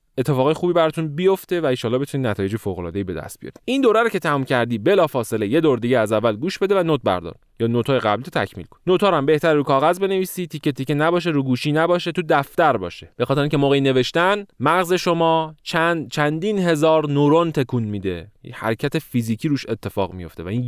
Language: Persian